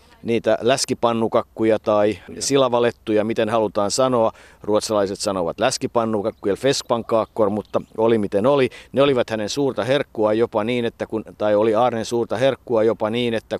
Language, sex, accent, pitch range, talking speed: Finnish, male, native, 95-115 Hz, 140 wpm